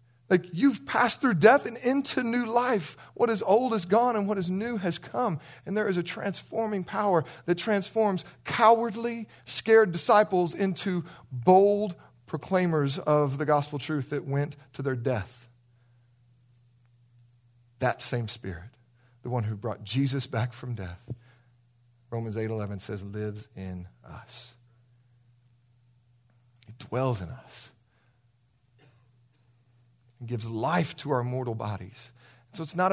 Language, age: English, 40-59